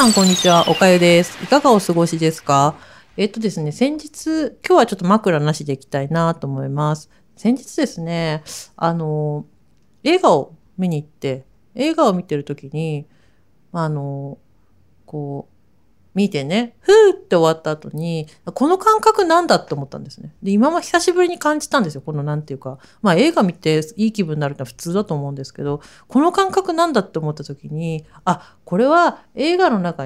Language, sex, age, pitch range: Japanese, female, 40-59, 150-245 Hz